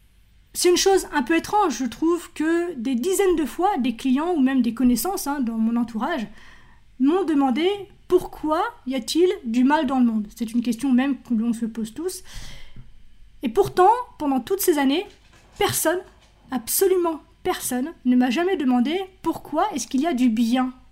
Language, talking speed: French, 180 wpm